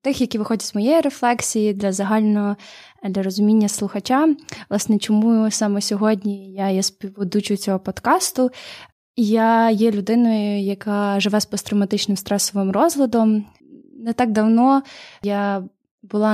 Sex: female